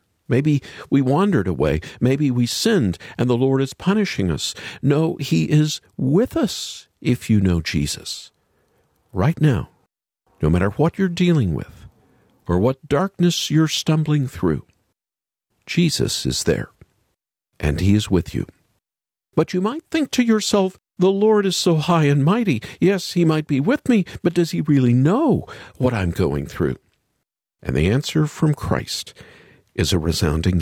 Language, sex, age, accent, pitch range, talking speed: English, male, 50-69, American, 95-155 Hz, 155 wpm